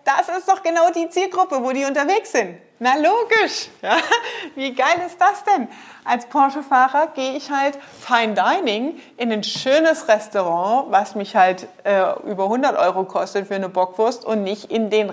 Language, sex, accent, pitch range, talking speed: German, female, German, 205-280 Hz, 175 wpm